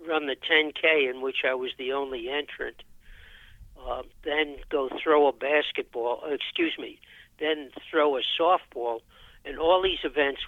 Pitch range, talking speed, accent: 130-160 Hz, 155 wpm, American